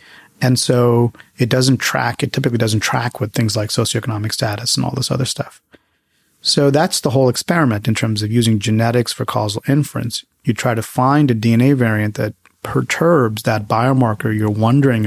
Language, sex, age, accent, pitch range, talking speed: English, male, 30-49, American, 110-135 Hz, 180 wpm